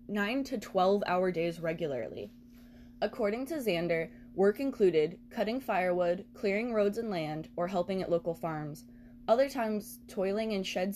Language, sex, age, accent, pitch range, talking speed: English, female, 20-39, American, 160-210 Hz, 150 wpm